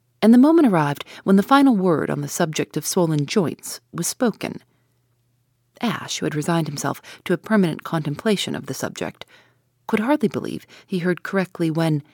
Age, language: 40-59, English